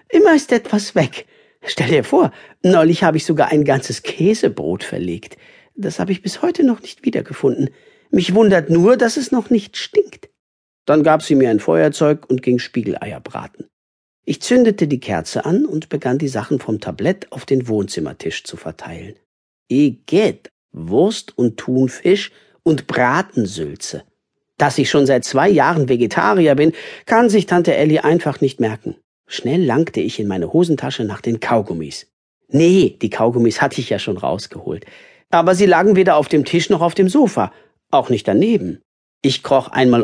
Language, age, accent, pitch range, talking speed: German, 50-69, German, 130-205 Hz, 170 wpm